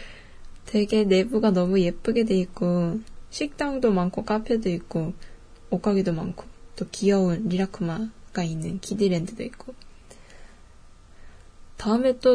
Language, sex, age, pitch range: Japanese, female, 10-29, 170-215 Hz